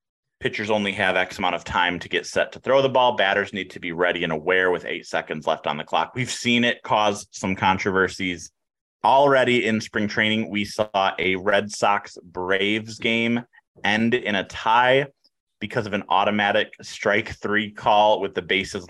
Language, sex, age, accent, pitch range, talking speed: English, male, 30-49, American, 95-120 Hz, 185 wpm